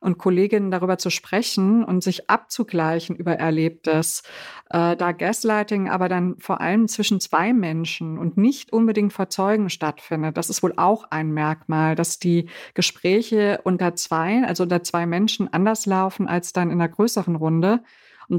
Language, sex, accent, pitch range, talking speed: German, female, German, 170-210 Hz, 160 wpm